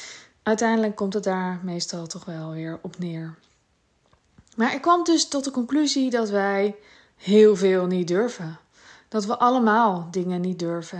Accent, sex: Dutch, female